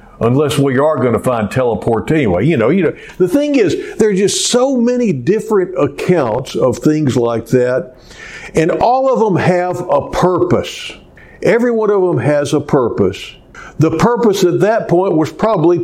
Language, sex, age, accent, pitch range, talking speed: English, male, 60-79, American, 125-180 Hz, 180 wpm